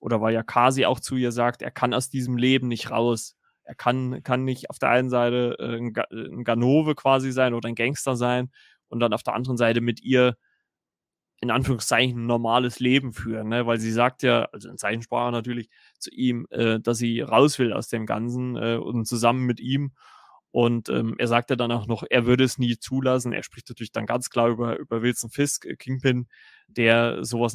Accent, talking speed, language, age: German, 210 wpm, German, 20-39